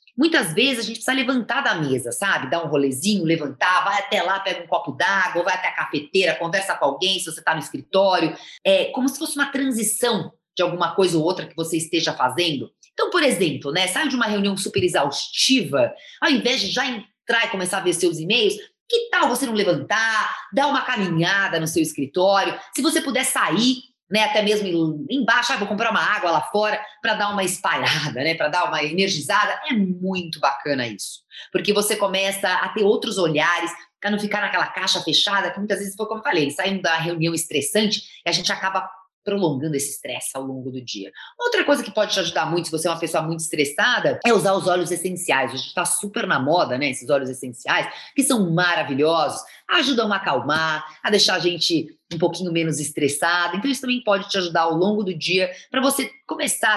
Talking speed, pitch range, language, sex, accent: 205 wpm, 160-215 Hz, Portuguese, female, Brazilian